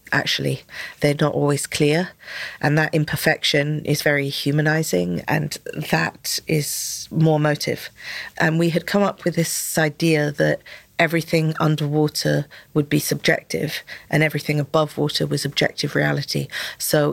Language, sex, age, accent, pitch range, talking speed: English, female, 40-59, British, 145-160 Hz, 135 wpm